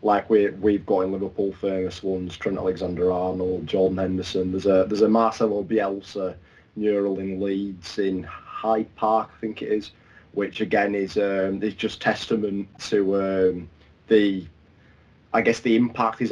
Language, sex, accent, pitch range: English, male, British, 95-115 Hz